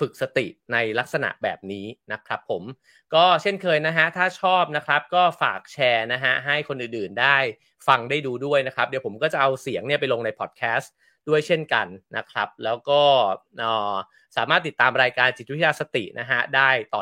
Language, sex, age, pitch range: English, male, 30-49, 125-160 Hz